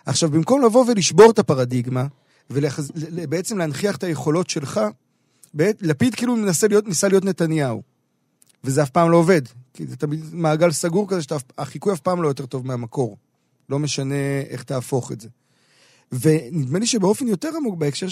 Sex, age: male, 40-59